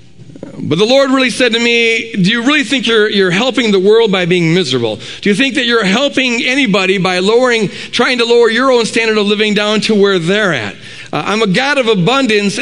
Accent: American